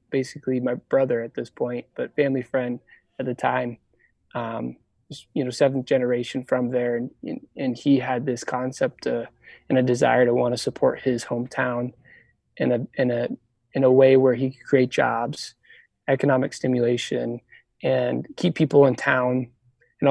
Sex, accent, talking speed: male, American, 170 wpm